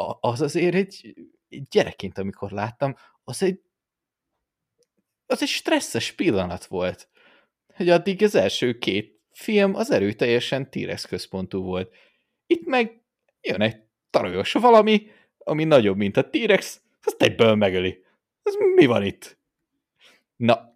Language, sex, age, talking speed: Hungarian, male, 30-49, 125 wpm